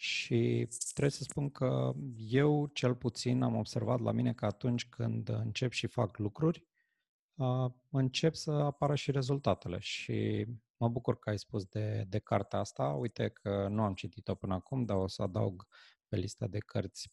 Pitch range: 100-130 Hz